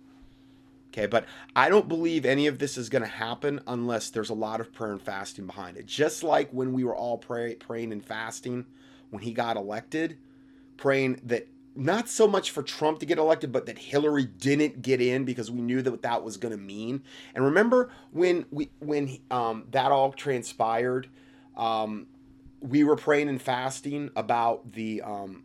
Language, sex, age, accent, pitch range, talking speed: English, male, 30-49, American, 120-160 Hz, 190 wpm